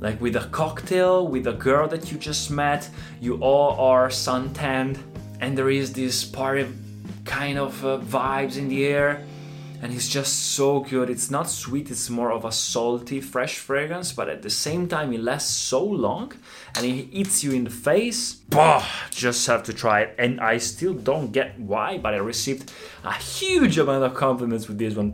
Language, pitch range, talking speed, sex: Italian, 105-135 Hz, 195 wpm, male